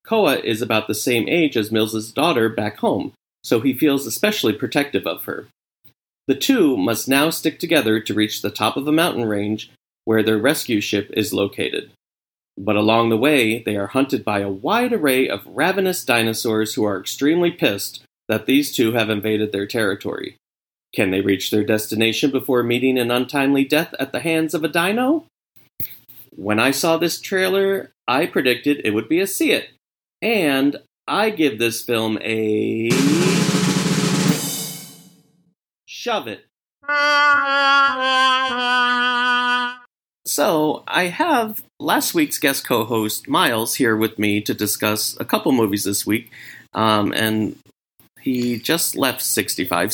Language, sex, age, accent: English, male, 40-59, American